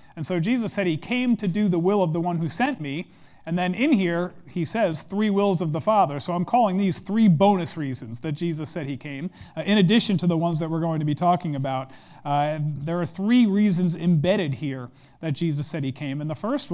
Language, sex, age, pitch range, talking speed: English, male, 40-59, 145-185 Hz, 240 wpm